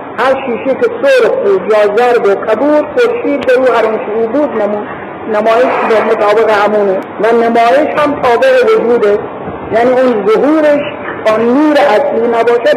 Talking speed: 145 wpm